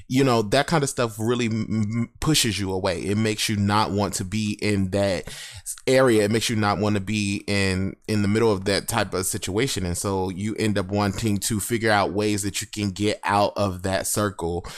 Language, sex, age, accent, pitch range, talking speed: English, male, 20-39, American, 100-130 Hz, 220 wpm